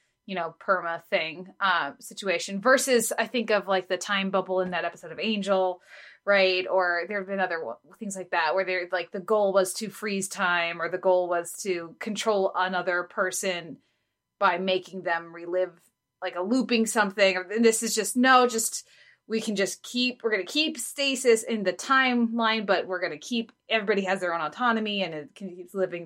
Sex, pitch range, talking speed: female, 180-230 Hz, 195 wpm